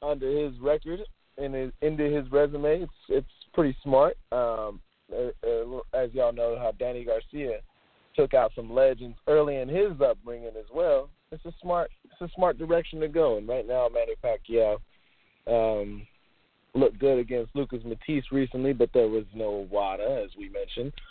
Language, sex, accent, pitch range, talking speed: English, male, American, 120-170 Hz, 175 wpm